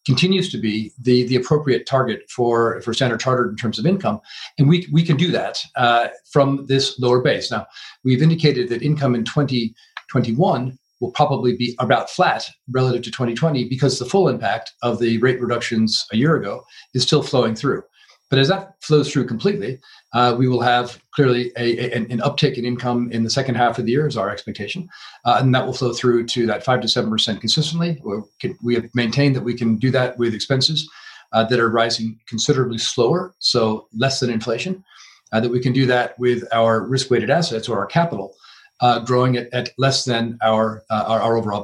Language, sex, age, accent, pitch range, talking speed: English, male, 40-59, American, 115-135 Hz, 200 wpm